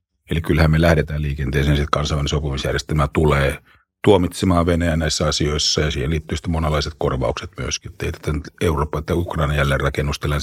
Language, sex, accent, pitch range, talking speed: Finnish, male, native, 75-90 Hz, 140 wpm